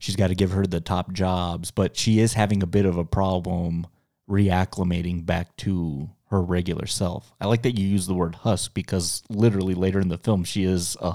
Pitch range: 90-105 Hz